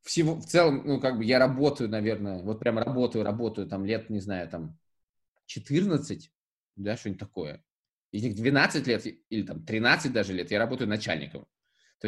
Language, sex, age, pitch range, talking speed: Russian, male, 20-39, 115-145 Hz, 170 wpm